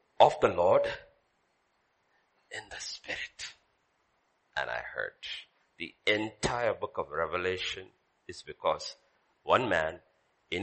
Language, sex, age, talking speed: English, male, 60-79, 105 wpm